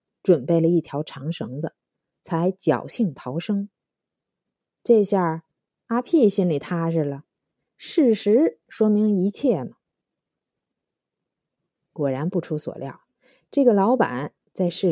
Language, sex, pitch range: Chinese, female, 165-245 Hz